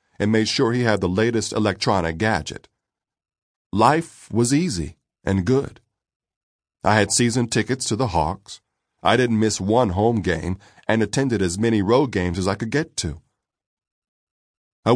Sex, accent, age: male, American, 40-59